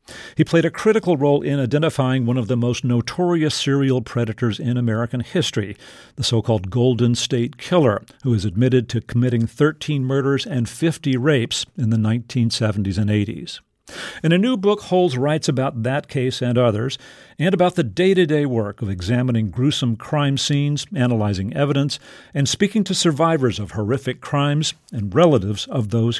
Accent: American